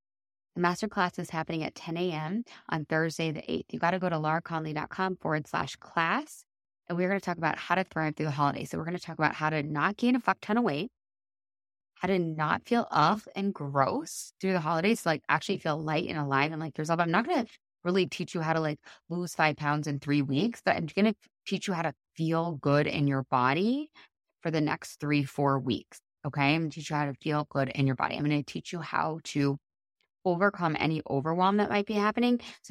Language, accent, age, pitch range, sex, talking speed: English, American, 20-39, 145-180 Hz, female, 235 wpm